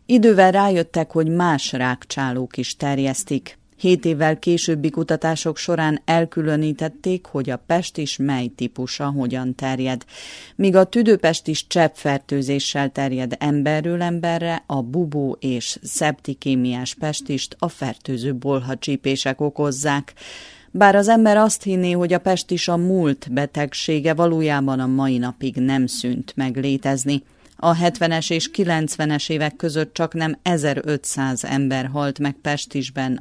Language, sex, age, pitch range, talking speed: Hungarian, female, 30-49, 135-160 Hz, 125 wpm